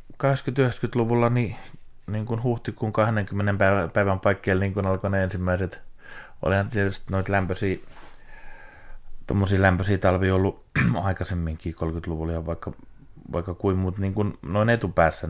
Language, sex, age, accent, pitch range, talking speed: Finnish, male, 30-49, native, 85-100 Hz, 120 wpm